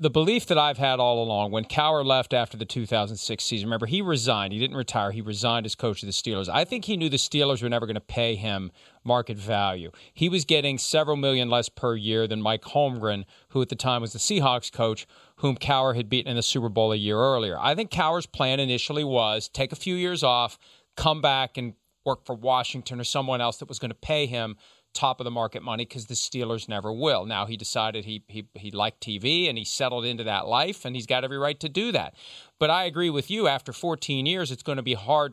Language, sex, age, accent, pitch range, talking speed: English, male, 40-59, American, 115-140 Hz, 235 wpm